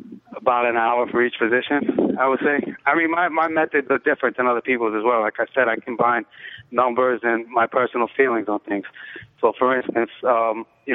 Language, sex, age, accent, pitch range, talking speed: English, male, 20-39, American, 115-130 Hz, 210 wpm